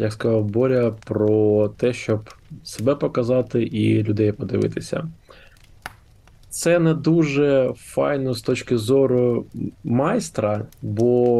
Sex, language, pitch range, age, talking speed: male, Ukrainian, 110-130 Hz, 20-39, 105 wpm